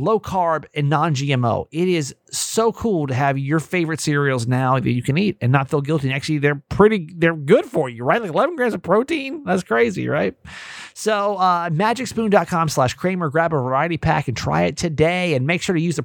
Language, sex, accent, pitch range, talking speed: English, male, American, 130-180 Hz, 210 wpm